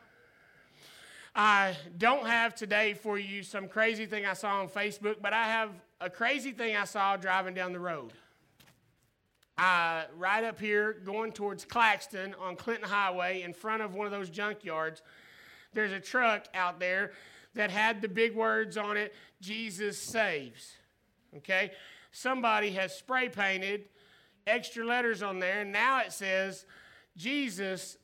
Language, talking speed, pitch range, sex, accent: English, 150 wpm, 195-230 Hz, male, American